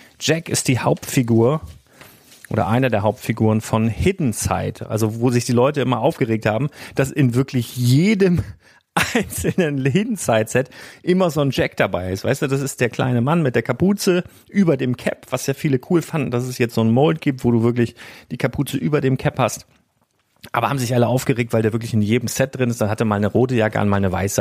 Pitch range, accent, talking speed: 115-145 Hz, German, 220 wpm